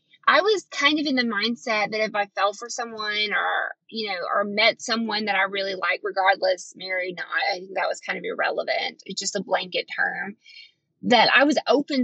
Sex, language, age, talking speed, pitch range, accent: female, English, 20-39, 210 wpm, 205-285 Hz, American